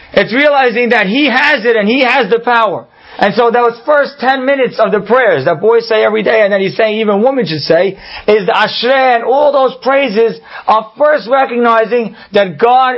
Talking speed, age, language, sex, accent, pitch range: 210 wpm, 40-59, English, male, American, 210-260 Hz